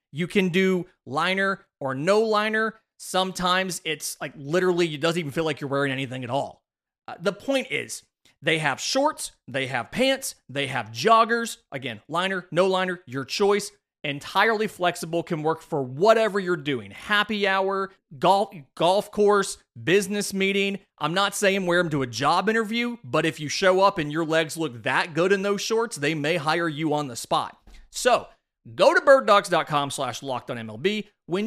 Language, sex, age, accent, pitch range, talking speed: English, male, 30-49, American, 145-205 Hz, 180 wpm